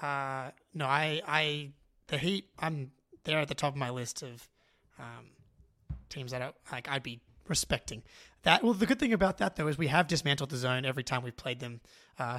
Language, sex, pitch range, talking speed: English, male, 125-150 Hz, 210 wpm